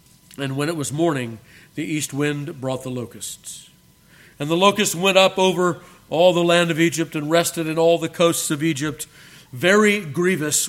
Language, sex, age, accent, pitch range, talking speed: English, male, 50-69, American, 155-190 Hz, 180 wpm